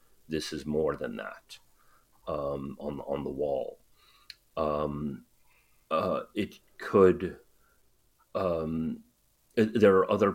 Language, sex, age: English, male, 40-59